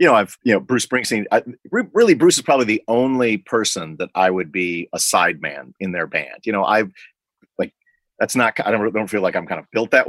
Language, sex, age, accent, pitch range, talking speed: English, male, 40-59, American, 95-125 Hz, 250 wpm